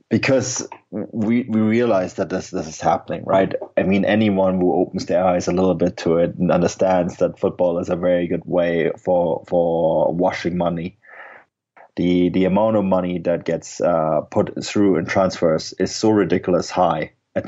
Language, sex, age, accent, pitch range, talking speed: English, male, 30-49, German, 90-100 Hz, 180 wpm